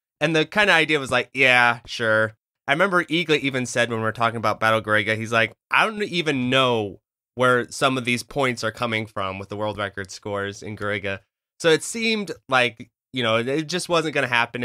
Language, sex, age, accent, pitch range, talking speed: English, male, 20-39, American, 110-145 Hz, 220 wpm